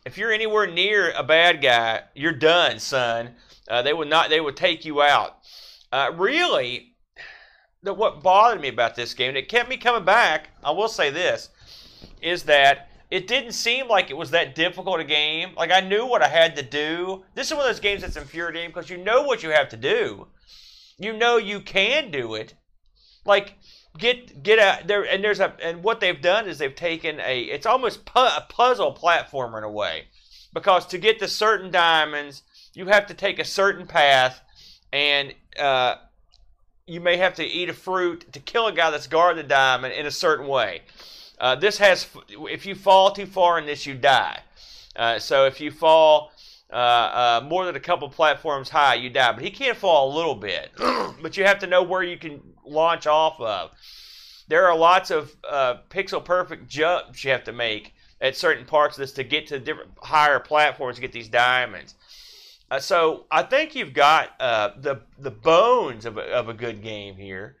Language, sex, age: English, male, 30-49